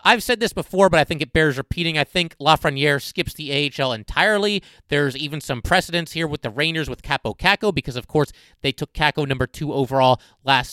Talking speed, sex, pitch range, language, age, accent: 215 wpm, male, 130-165 Hz, English, 30-49, American